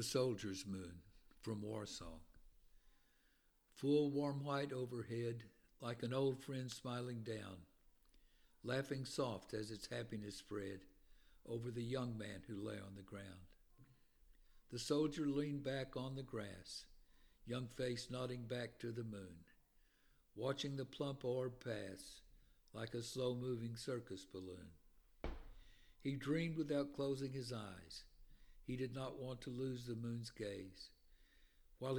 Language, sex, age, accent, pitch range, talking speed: English, male, 60-79, American, 100-130 Hz, 130 wpm